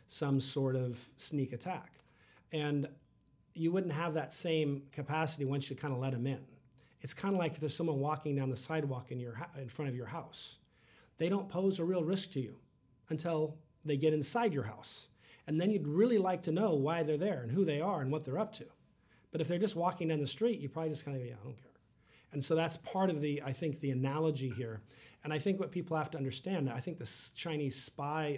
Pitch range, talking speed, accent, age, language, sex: 135-165 Hz, 235 wpm, American, 40-59, English, male